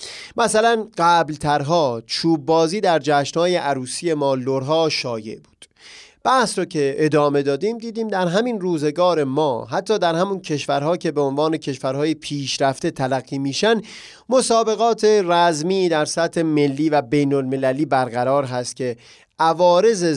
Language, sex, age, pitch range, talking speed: Persian, male, 30-49, 140-180 Hz, 130 wpm